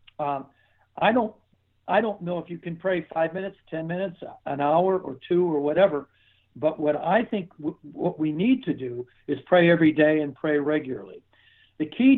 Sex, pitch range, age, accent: male, 140-175 Hz, 60-79, American